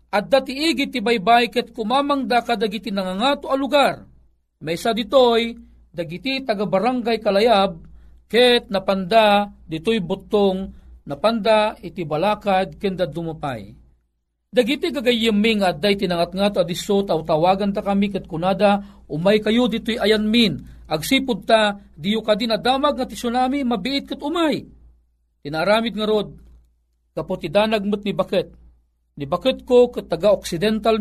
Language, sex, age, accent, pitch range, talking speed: Filipino, male, 40-59, native, 155-215 Hz, 130 wpm